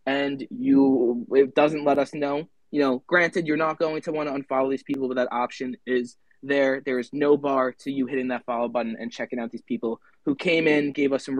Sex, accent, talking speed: male, American, 235 wpm